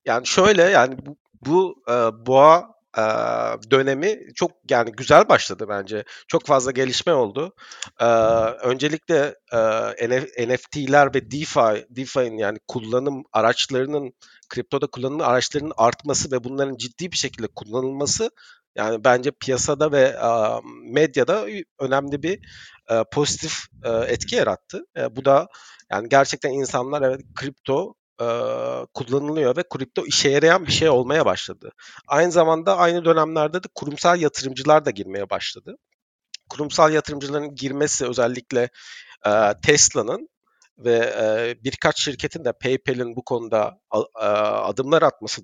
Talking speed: 110 wpm